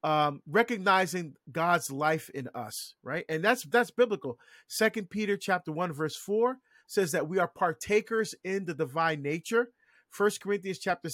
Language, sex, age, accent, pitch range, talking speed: English, male, 40-59, American, 160-215 Hz, 155 wpm